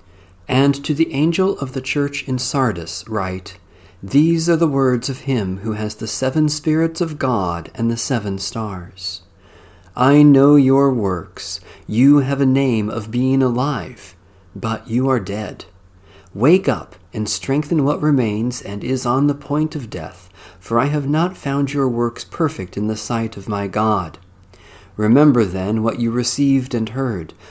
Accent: American